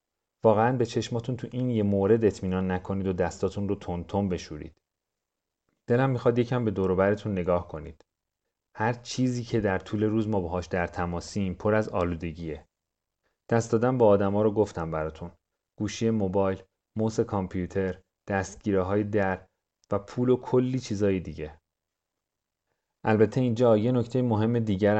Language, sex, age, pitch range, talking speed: English, male, 40-59, 90-110 Hz, 145 wpm